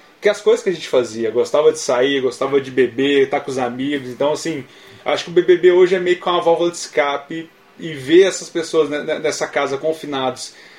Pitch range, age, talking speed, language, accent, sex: 140-180 Hz, 20-39, 220 wpm, Portuguese, Brazilian, male